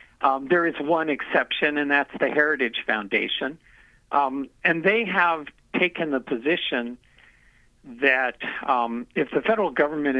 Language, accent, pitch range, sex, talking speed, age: English, American, 120-150 Hz, male, 135 wpm, 50-69